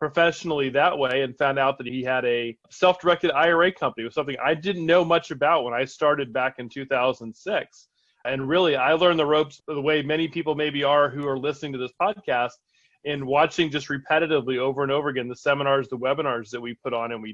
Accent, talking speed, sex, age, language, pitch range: American, 215 wpm, male, 30-49, English, 125-155 Hz